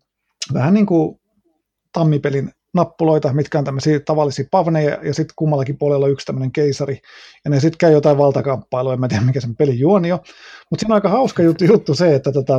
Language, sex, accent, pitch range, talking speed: Finnish, male, native, 140-180 Hz, 185 wpm